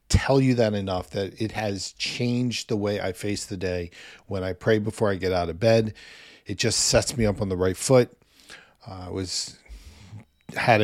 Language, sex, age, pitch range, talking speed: English, male, 40-59, 100-130 Hz, 200 wpm